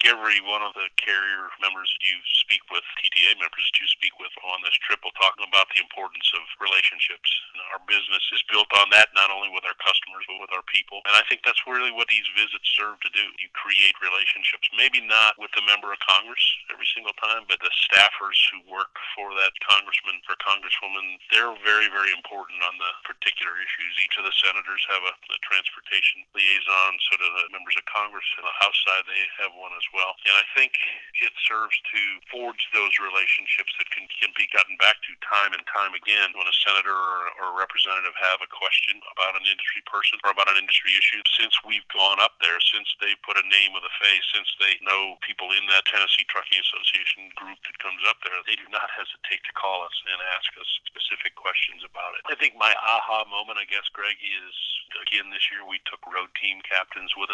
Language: English